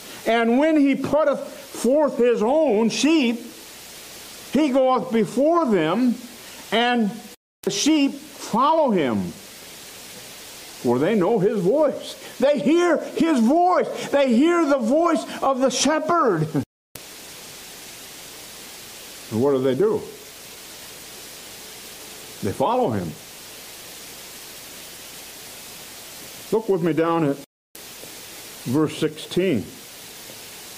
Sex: male